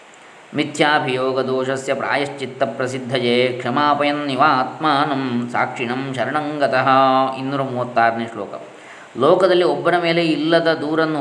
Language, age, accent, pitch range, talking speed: Kannada, 20-39, native, 125-155 Hz, 90 wpm